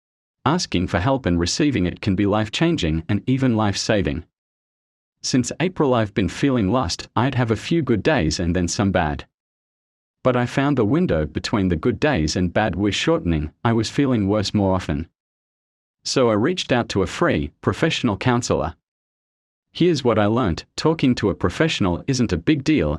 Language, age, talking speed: English, 40-59, 185 wpm